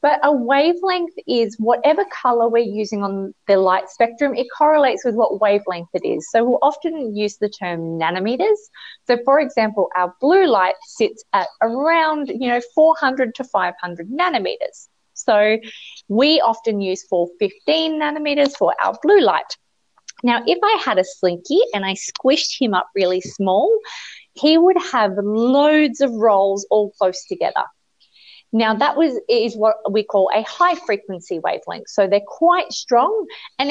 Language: English